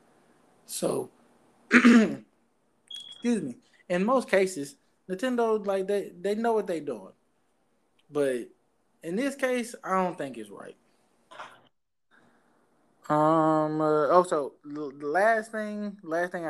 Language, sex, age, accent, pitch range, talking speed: English, male, 20-39, American, 130-180 Hz, 115 wpm